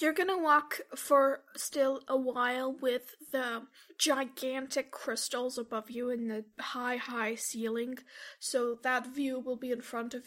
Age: 20-39